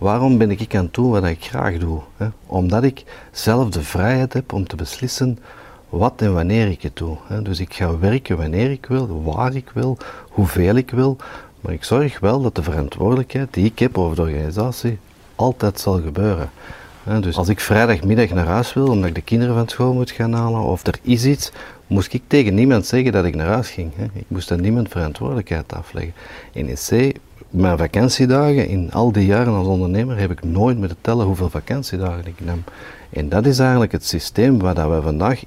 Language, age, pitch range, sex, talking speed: Dutch, 50-69, 85-120 Hz, male, 200 wpm